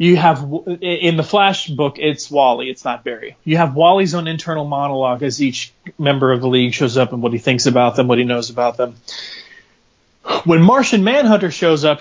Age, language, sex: 30-49, English, male